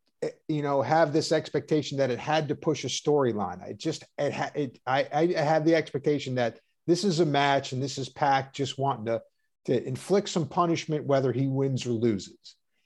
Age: 50-69